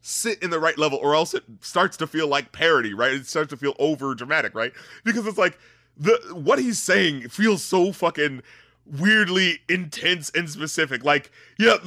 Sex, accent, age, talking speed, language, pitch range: male, American, 30-49, 185 wpm, English, 150-215 Hz